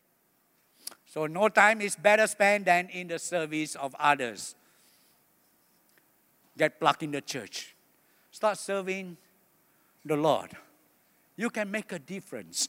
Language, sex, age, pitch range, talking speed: English, male, 60-79, 155-195 Hz, 125 wpm